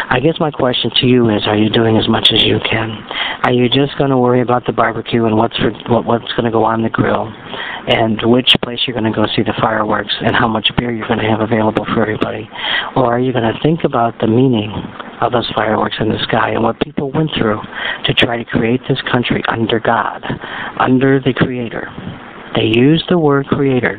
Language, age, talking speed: English, 50-69, 230 wpm